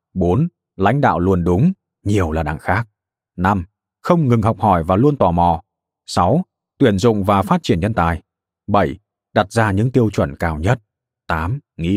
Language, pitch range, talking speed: Vietnamese, 95-125 Hz, 180 wpm